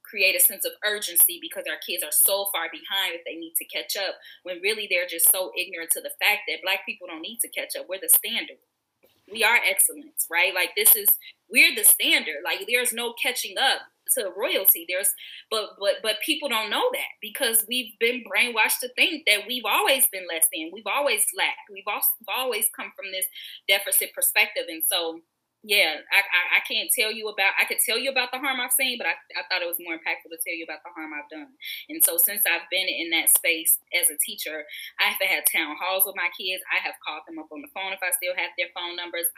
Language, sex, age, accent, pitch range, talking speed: English, female, 10-29, American, 170-265 Hz, 240 wpm